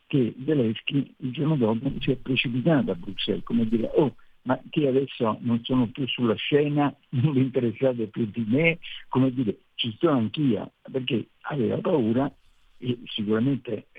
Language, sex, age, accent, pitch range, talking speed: Italian, male, 60-79, native, 95-125 Hz, 160 wpm